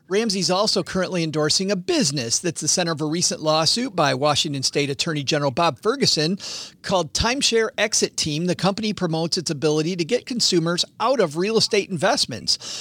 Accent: American